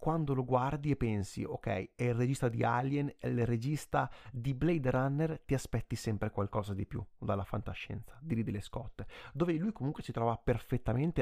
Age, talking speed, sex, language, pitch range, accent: 30-49, 180 wpm, male, Italian, 115-145 Hz, native